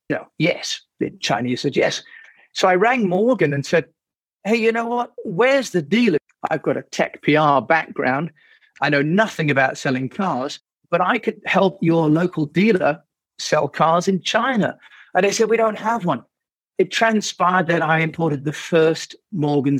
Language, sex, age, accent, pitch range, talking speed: English, male, 50-69, British, 135-185 Hz, 170 wpm